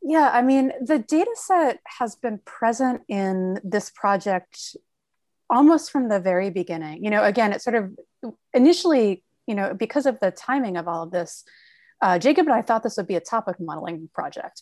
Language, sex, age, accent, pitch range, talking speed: English, female, 30-49, American, 185-250 Hz, 190 wpm